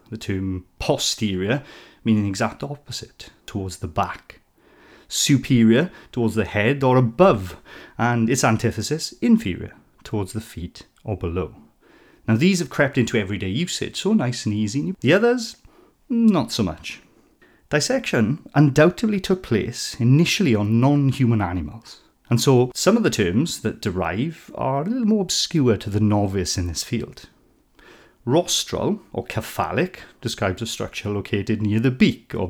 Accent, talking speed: British, 145 wpm